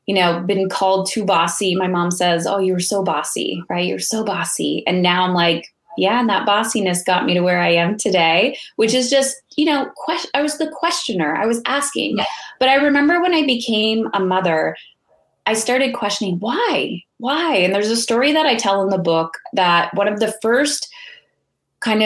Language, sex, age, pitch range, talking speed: English, female, 20-39, 190-255 Hz, 200 wpm